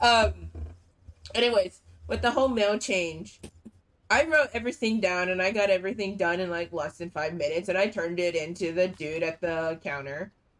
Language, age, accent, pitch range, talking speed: English, 20-39, American, 170-230 Hz, 180 wpm